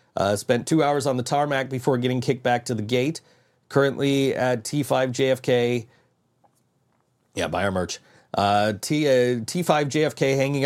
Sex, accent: male, American